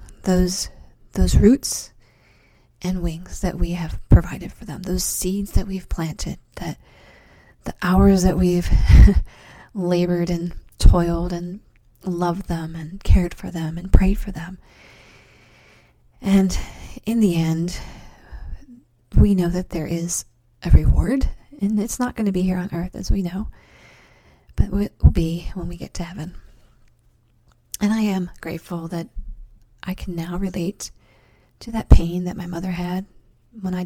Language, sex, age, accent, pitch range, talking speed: English, female, 30-49, American, 165-190 Hz, 150 wpm